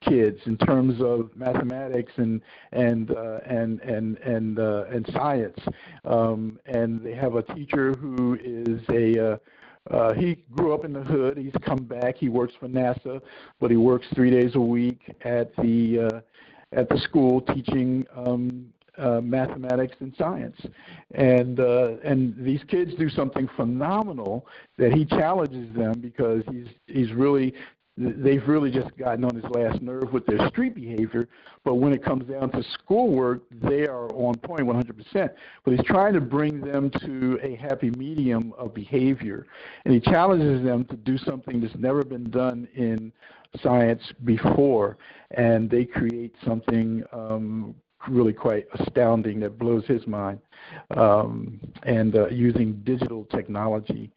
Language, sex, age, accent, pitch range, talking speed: English, male, 50-69, American, 115-130 Hz, 155 wpm